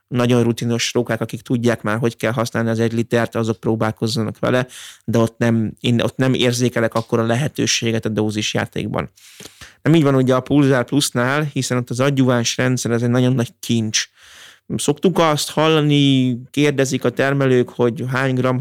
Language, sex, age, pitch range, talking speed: Hungarian, male, 20-39, 115-130 Hz, 170 wpm